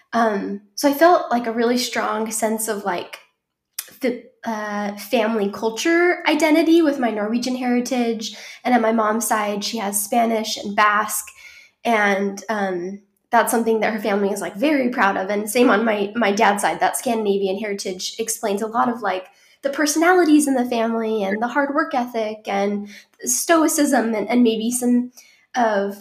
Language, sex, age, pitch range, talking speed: English, female, 10-29, 215-260 Hz, 170 wpm